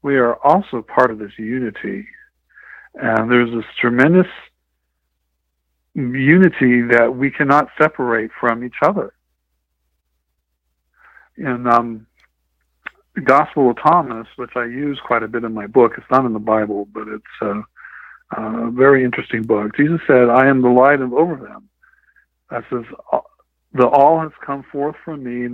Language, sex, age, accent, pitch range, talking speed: English, male, 60-79, American, 110-140 Hz, 150 wpm